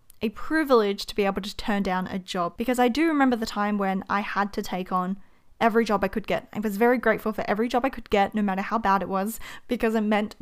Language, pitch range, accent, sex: English, 195-245 Hz, Australian, female